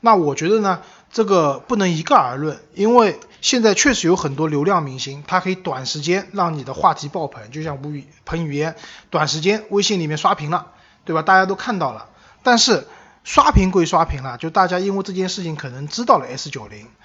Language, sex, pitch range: Chinese, male, 145-190 Hz